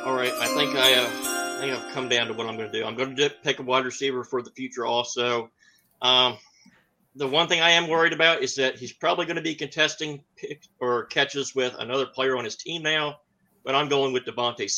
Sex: male